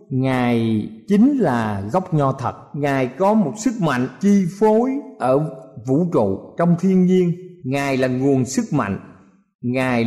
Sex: male